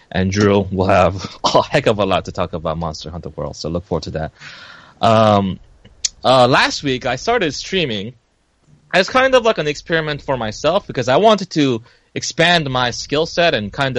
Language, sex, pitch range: English, male, 100-135 Hz